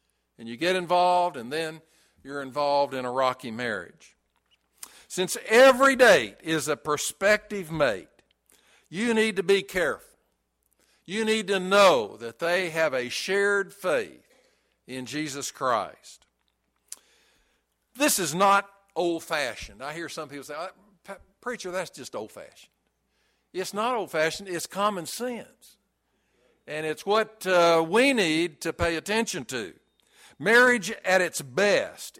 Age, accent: 60-79, American